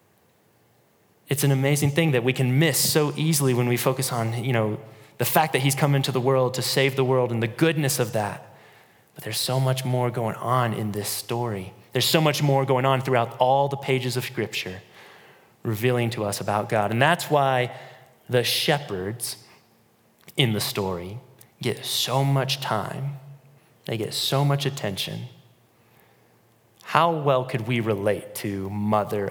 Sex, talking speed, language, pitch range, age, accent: male, 170 wpm, English, 115-140 Hz, 30-49, American